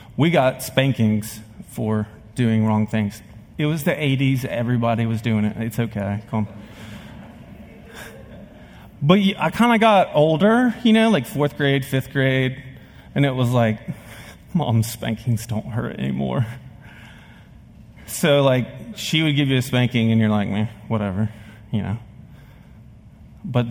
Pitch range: 110-145 Hz